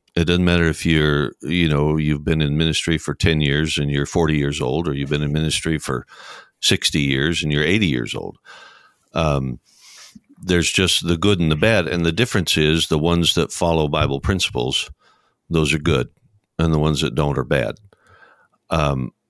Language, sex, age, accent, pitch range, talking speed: English, male, 60-79, American, 75-90 Hz, 190 wpm